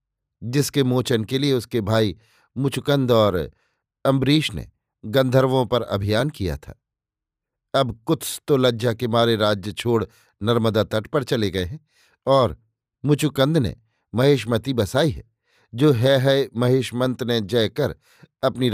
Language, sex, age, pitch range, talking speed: Hindi, male, 50-69, 110-135 Hz, 140 wpm